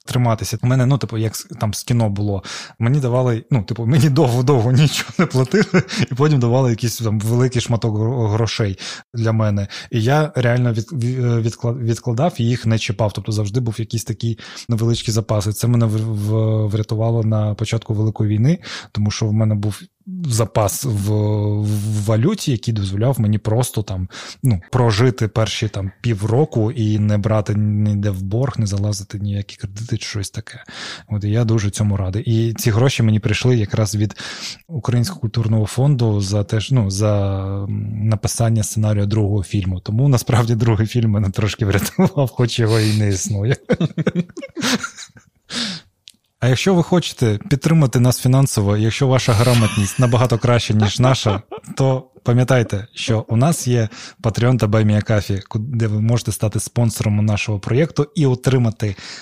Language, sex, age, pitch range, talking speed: Ukrainian, male, 20-39, 105-130 Hz, 150 wpm